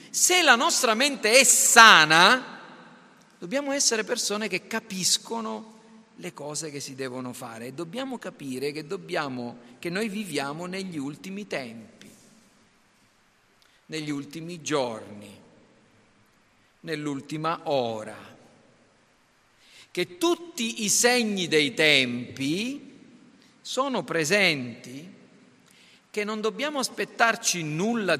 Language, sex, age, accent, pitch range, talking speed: Italian, male, 50-69, native, 155-230 Hz, 100 wpm